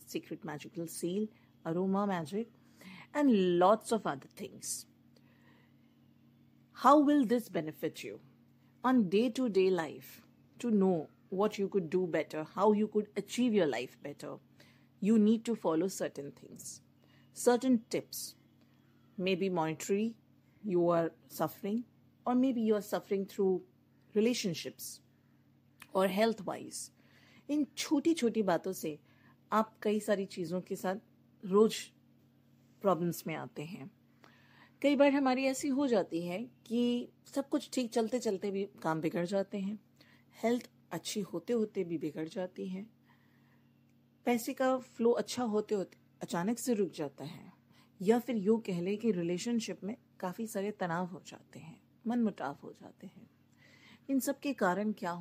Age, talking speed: 50-69, 145 wpm